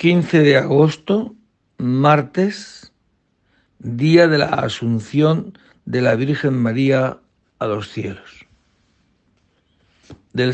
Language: Spanish